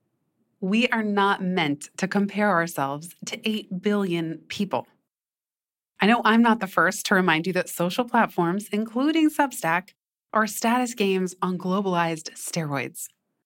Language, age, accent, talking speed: English, 30-49, American, 140 wpm